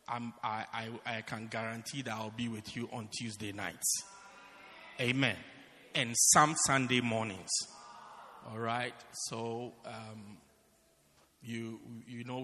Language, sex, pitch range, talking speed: English, male, 110-145 Hz, 115 wpm